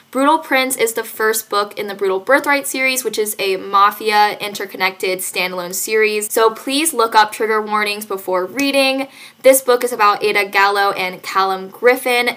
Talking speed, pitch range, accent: 170 wpm, 200-250 Hz, American